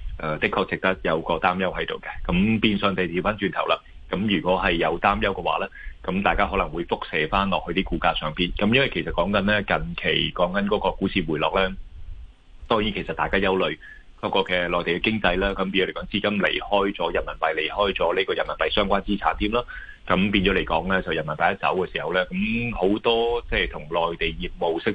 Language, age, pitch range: Chinese, 30-49, 85-100 Hz